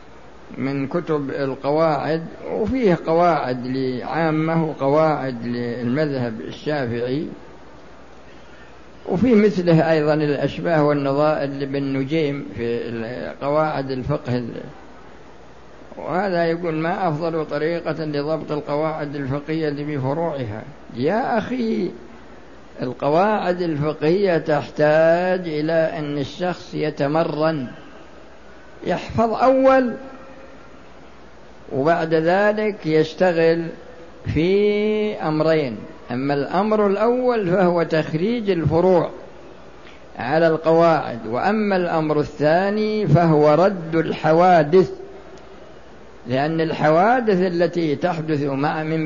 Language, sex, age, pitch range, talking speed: Arabic, male, 60-79, 150-185 Hz, 80 wpm